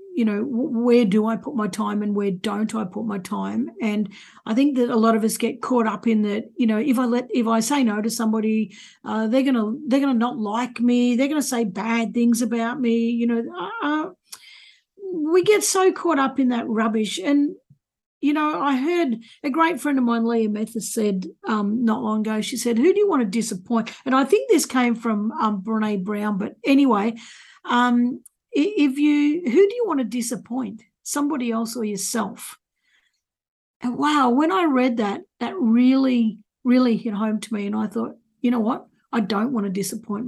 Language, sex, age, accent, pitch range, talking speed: English, female, 50-69, Australian, 220-270 Hz, 205 wpm